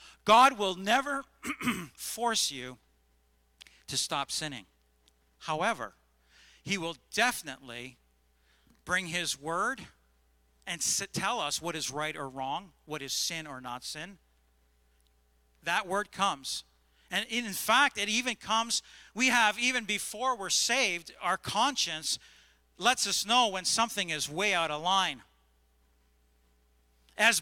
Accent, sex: American, male